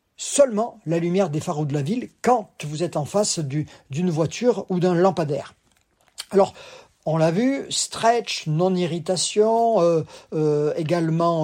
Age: 50-69